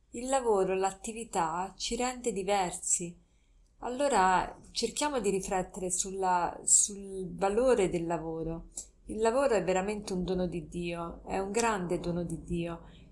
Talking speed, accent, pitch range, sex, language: 135 wpm, native, 180-215 Hz, female, Italian